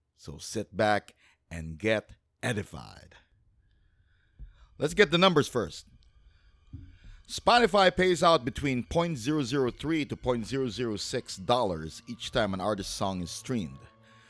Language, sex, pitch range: English, male, 90-140 Hz